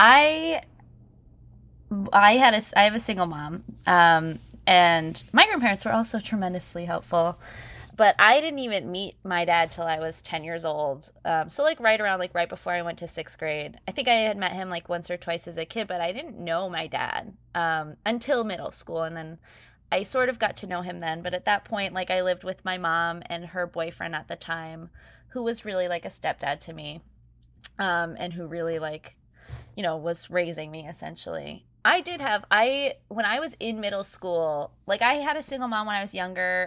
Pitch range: 170-210 Hz